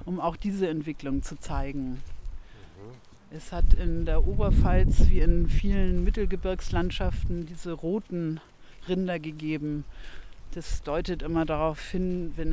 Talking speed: 120 wpm